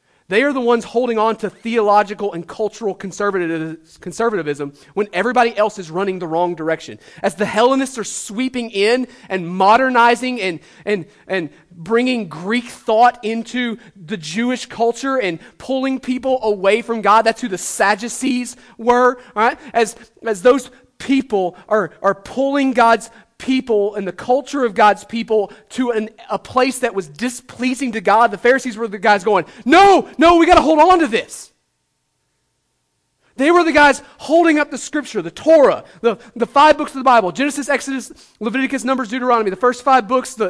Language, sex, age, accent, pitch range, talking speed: English, male, 30-49, American, 205-260 Hz, 170 wpm